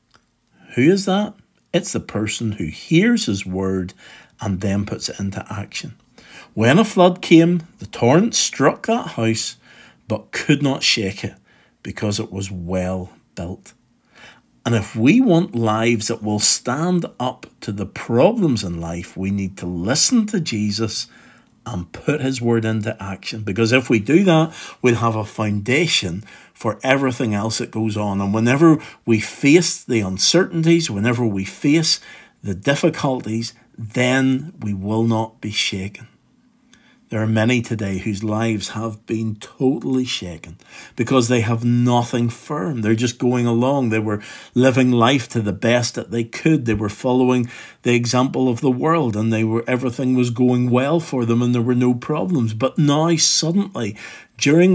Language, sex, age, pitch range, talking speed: English, male, 50-69, 105-135 Hz, 160 wpm